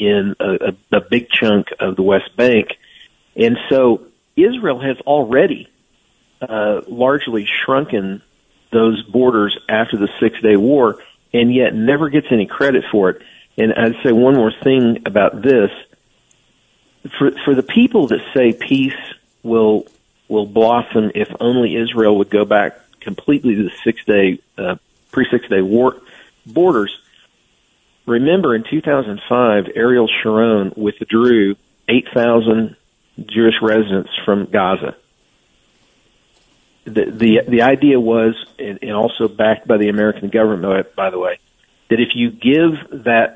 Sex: male